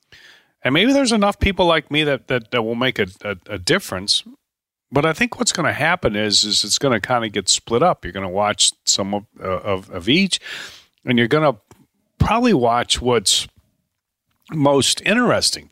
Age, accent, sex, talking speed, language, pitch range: 40-59, American, male, 195 wpm, English, 100-145 Hz